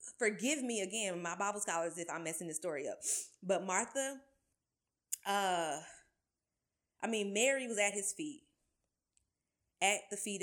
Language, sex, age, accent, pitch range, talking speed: English, female, 20-39, American, 170-215 Hz, 145 wpm